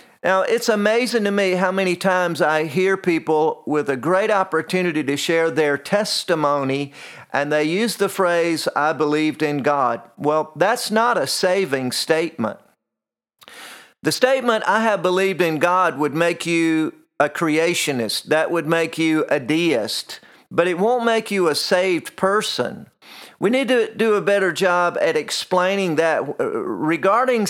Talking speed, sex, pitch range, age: 155 wpm, male, 155-205 Hz, 40-59